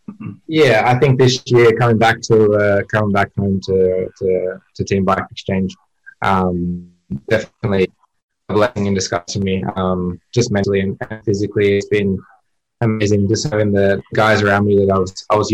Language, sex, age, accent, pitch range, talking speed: English, male, 20-39, Australian, 95-105 Hz, 170 wpm